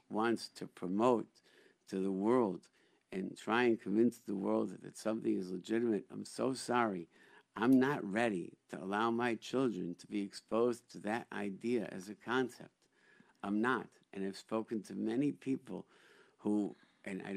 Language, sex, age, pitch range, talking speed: English, male, 60-79, 100-115 Hz, 160 wpm